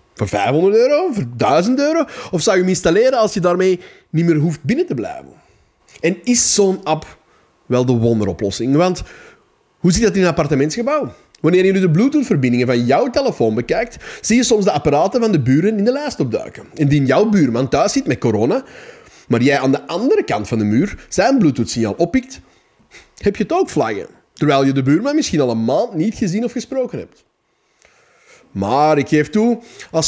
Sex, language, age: male, English, 30-49